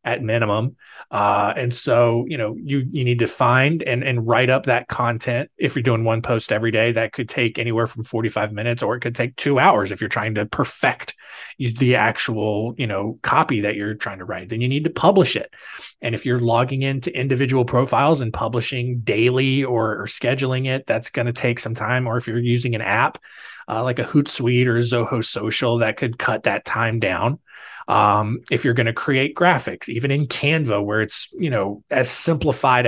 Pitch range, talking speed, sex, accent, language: 110-135 Hz, 210 wpm, male, American, English